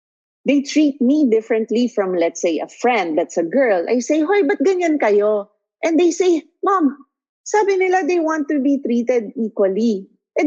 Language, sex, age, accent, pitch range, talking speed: English, female, 40-59, Filipino, 205-320 Hz, 180 wpm